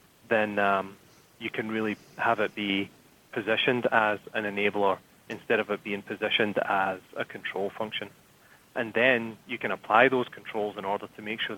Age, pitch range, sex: 20-39, 100-115 Hz, male